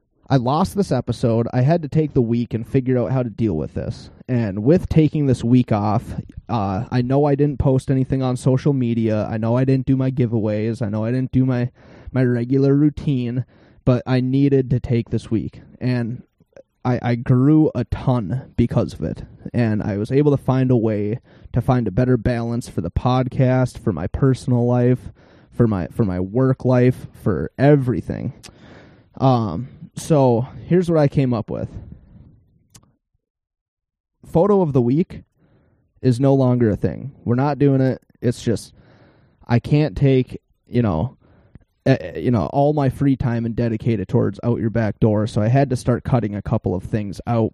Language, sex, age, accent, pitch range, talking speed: English, male, 20-39, American, 110-130 Hz, 185 wpm